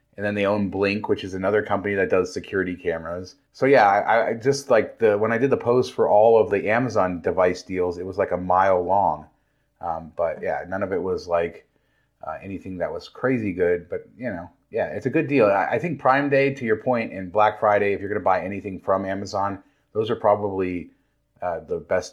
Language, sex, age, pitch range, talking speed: English, male, 30-49, 90-110 Hz, 230 wpm